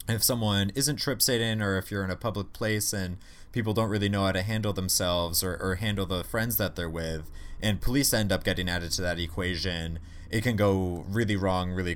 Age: 20-39